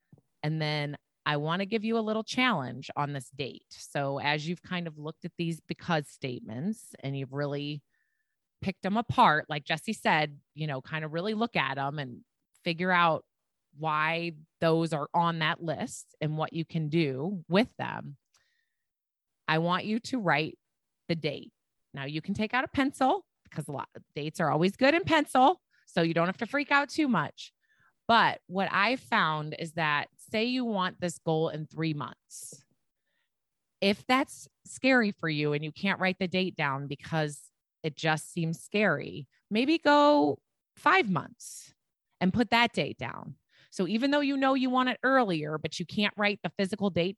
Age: 30-49